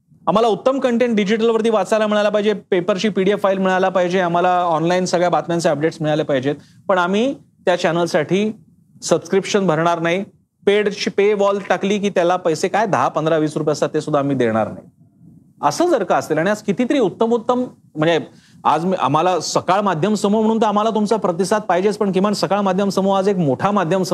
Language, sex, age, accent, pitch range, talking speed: Marathi, male, 40-59, native, 170-220 Hz, 185 wpm